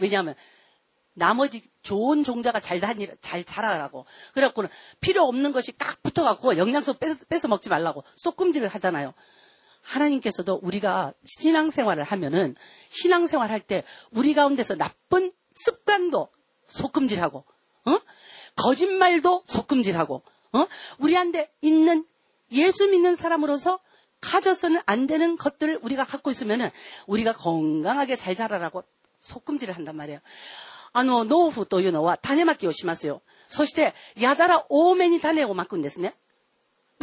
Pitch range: 215-350 Hz